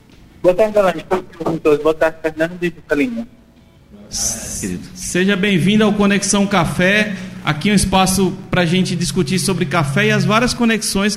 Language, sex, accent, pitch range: Portuguese, male, Brazilian, 160-220 Hz